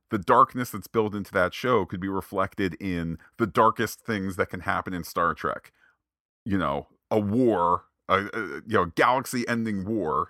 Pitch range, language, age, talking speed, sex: 85-110 Hz, English, 40-59, 155 wpm, male